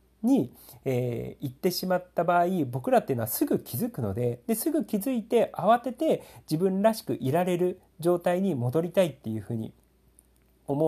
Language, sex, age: Japanese, male, 40-59